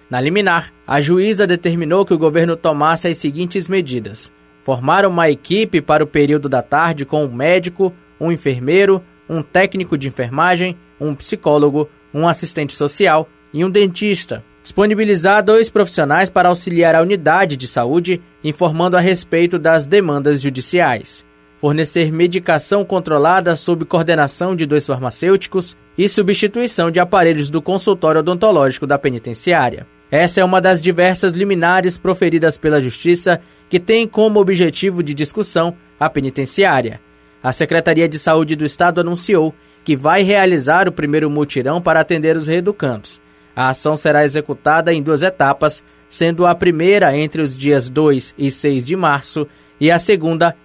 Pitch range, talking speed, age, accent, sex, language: 145-185 Hz, 145 wpm, 20-39, Brazilian, male, Portuguese